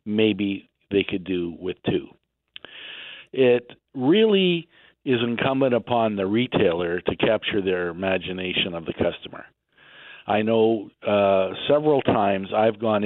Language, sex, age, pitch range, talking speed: English, male, 50-69, 95-115 Hz, 125 wpm